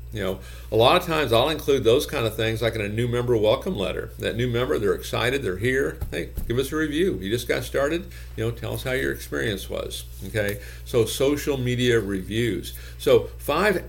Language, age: English, 50-69